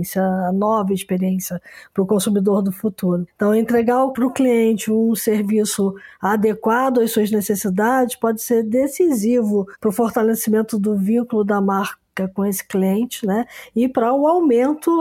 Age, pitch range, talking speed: 20-39, 210-250 Hz, 150 wpm